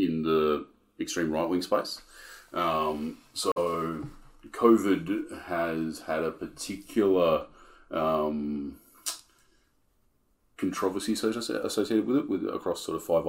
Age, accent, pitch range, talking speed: 30-49, Australian, 75-110 Hz, 100 wpm